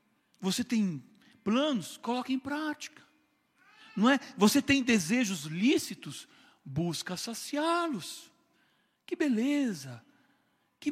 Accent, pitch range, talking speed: Brazilian, 190-275 Hz, 95 wpm